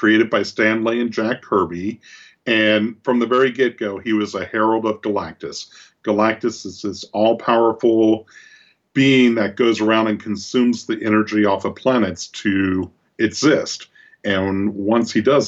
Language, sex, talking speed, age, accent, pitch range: English, male, 145 wpm, 50-69, American, 100-115 Hz